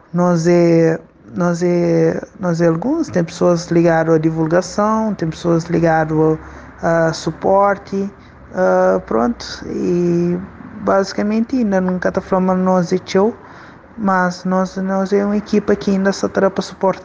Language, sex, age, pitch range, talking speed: Portuguese, male, 20-39, 175-205 Hz, 125 wpm